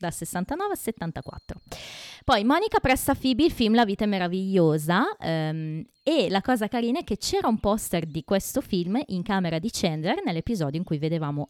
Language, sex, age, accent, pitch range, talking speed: Italian, female, 20-39, native, 150-205 Hz, 180 wpm